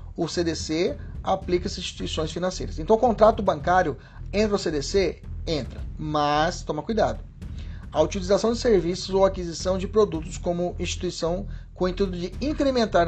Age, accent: 40-59, Brazilian